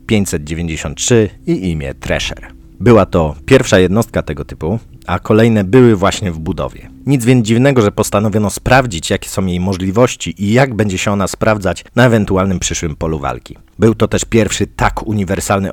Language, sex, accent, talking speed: Polish, male, native, 165 wpm